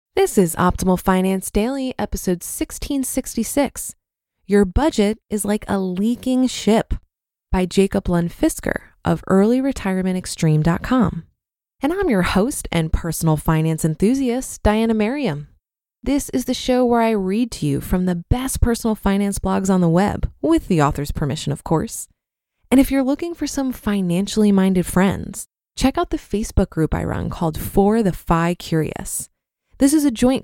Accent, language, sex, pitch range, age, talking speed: American, English, female, 185-250 Hz, 20-39, 155 wpm